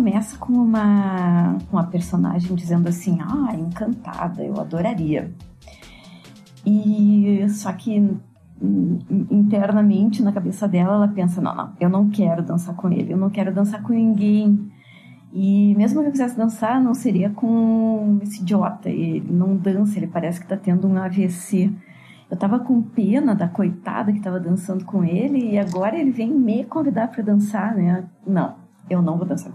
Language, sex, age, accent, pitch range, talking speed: Portuguese, female, 30-49, Brazilian, 185-225 Hz, 160 wpm